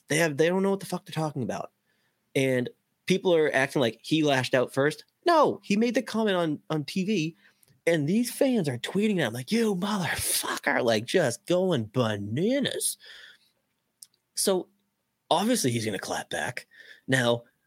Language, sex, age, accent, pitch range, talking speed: English, male, 20-39, American, 115-175 Hz, 165 wpm